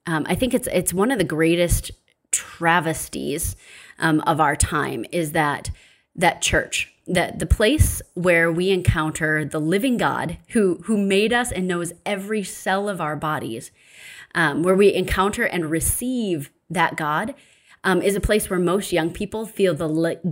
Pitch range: 160-200 Hz